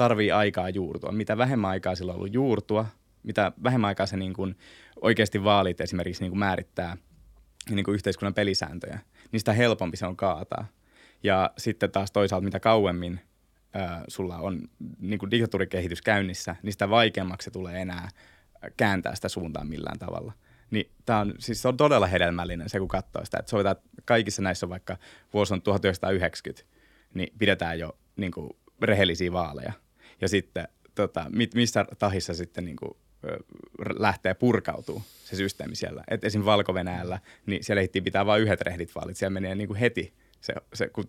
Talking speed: 160 wpm